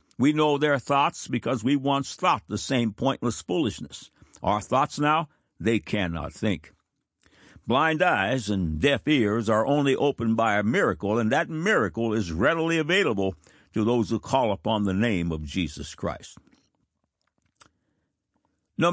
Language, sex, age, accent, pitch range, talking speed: English, male, 60-79, American, 100-145 Hz, 145 wpm